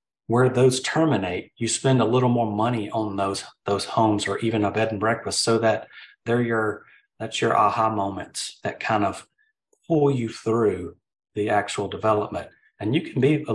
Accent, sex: American, male